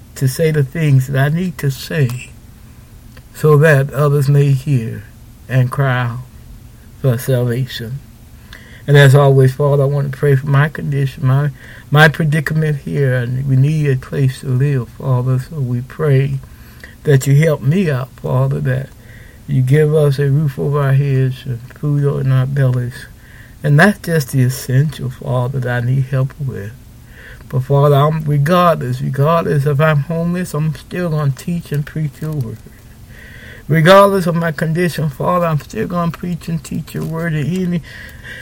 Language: English